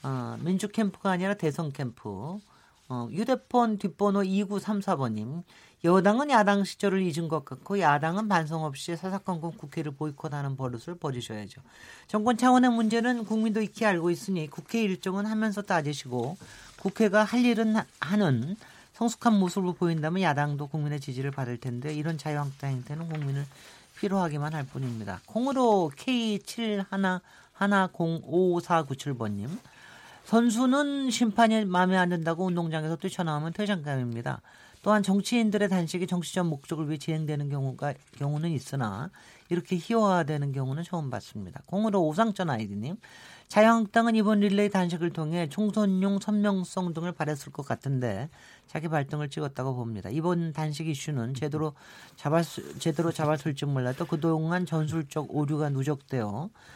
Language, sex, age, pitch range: Korean, male, 40-59, 145-200 Hz